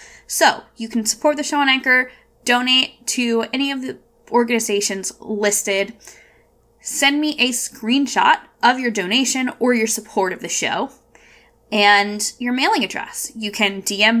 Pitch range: 195-245 Hz